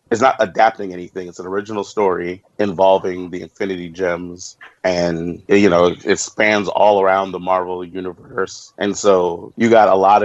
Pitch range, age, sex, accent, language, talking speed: 90-110 Hz, 30-49, male, American, English, 165 wpm